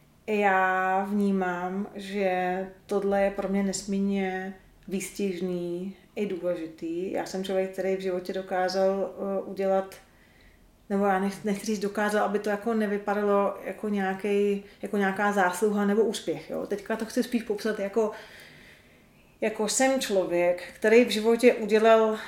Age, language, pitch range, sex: 30-49, Czech, 190-210 Hz, female